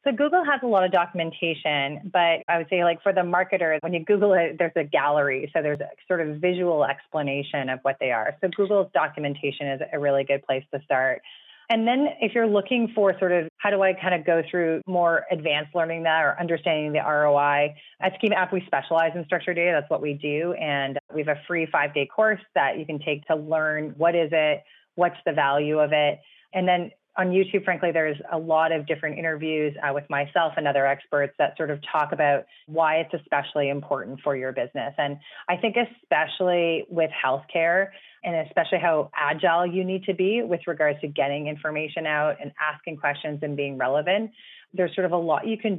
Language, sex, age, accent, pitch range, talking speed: English, female, 30-49, American, 145-180 Hz, 210 wpm